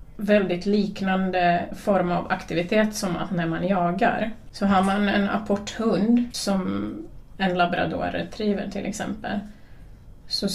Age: 30-49